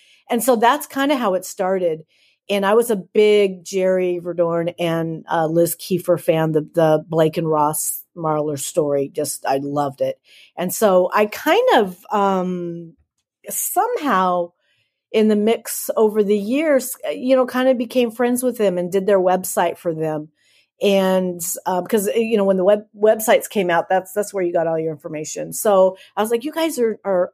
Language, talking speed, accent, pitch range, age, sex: English, 185 wpm, American, 160-210 Hz, 50-69, female